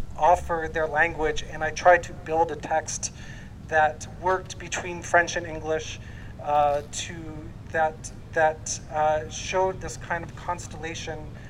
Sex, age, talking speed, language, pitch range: male, 30-49, 135 wpm, French, 150-175 Hz